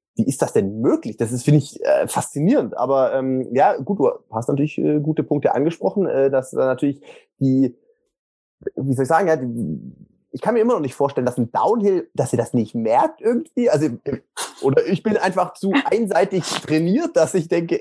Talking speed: 200 wpm